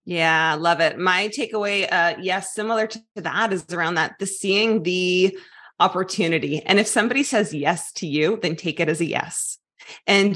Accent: American